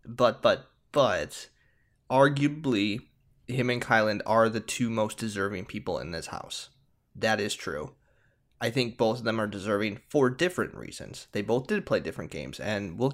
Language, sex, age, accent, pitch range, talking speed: English, male, 20-39, American, 115-145 Hz, 170 wpm